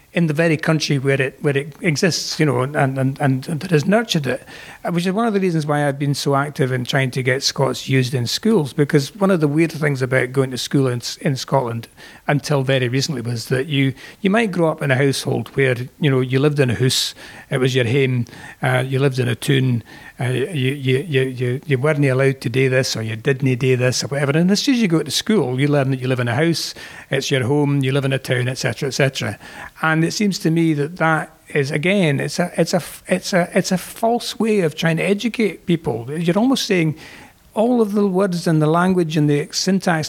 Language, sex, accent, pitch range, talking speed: English, male, British, 135-165 Hz, 245 wpm